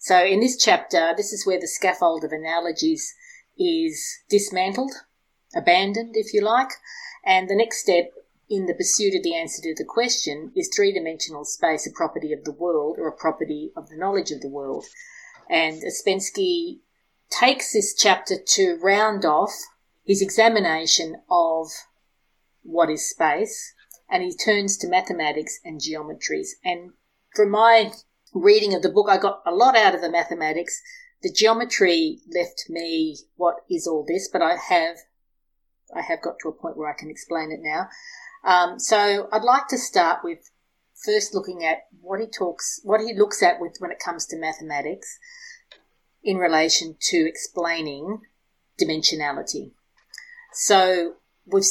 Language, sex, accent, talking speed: English, female, Australian, 160 wpm